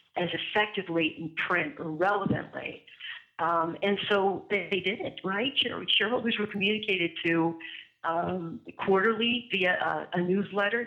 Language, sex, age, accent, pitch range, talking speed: English, female, 60-79, American, 165-205 Hz, 135 wpm